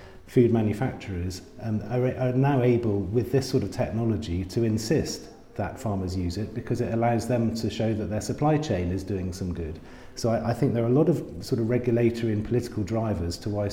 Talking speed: 215 wpm